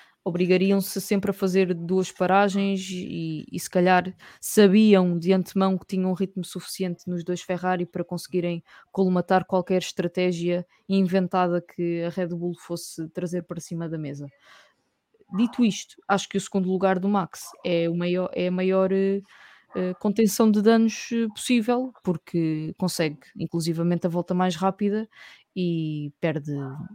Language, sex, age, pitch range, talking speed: English, female, 20-39, 175-195 Hz, 140 wpm